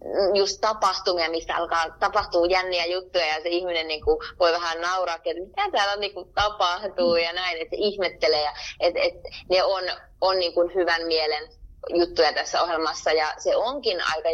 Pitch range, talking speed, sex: 160-195 Hz, 170 wpm, female